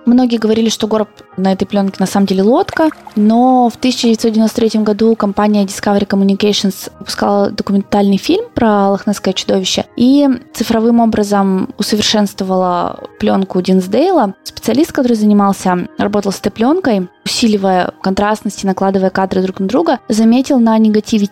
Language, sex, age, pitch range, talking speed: Russian, female, 20-39, 195-240 Hz, 130 wpm